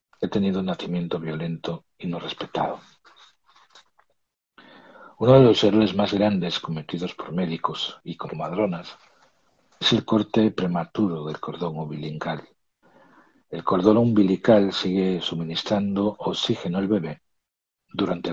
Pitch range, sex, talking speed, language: 85-105 Hz, male, 115 wpm, Spanish